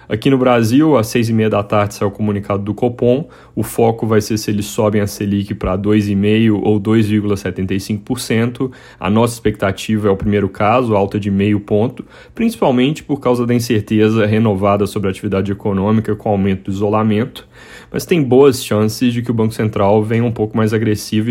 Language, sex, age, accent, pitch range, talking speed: Portuguese, male, 20-39, Brazilian, 105-115 Hz, 190 wpm